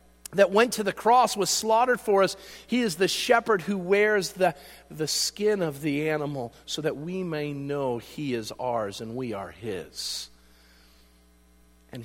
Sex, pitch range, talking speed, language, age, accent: male, 120-180 Hz, 170 wpm, English, 40-59, American